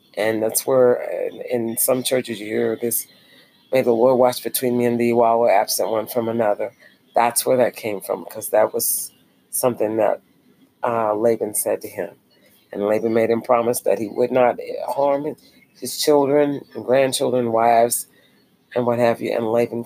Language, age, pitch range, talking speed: English, 40-59, 115-135 Hz, 175 wpm